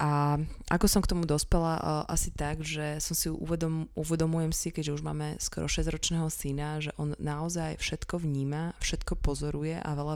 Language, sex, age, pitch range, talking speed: Slovak, female, 20-39, 150-175 Hz, 170 wpm